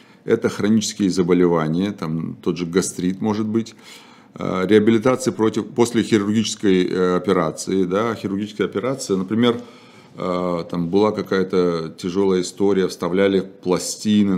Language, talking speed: Russian, 100 wpm